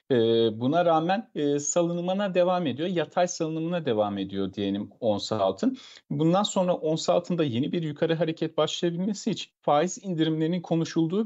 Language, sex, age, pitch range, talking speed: Turkish, male, 40-59, 135-175 Hz, 130 wpm